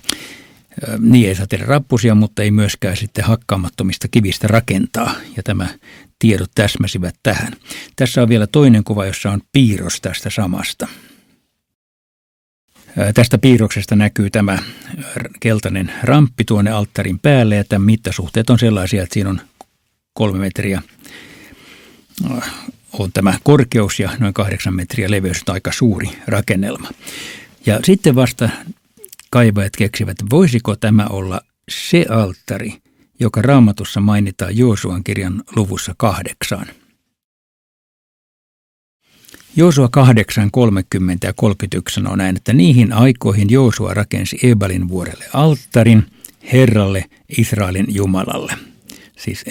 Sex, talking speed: male, 110 wpm